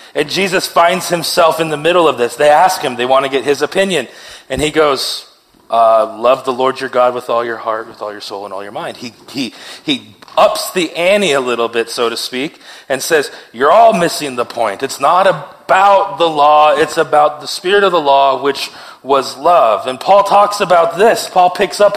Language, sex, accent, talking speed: English, male, American, 220 wpm